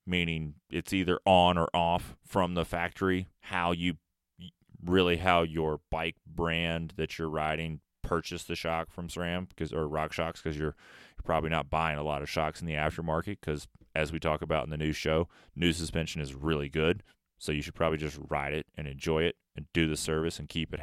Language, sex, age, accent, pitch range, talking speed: English, male, 30-49, American, 80-95 Hz, 200 wpm